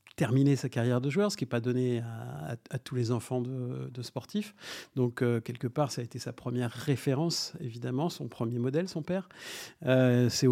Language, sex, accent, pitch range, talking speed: French, male, French, 115-135 Hz, 210 wpm